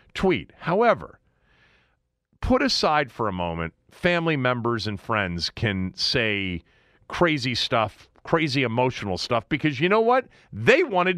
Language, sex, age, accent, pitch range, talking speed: English, male, 40-59, American, 115-180 Hz, 130 wpm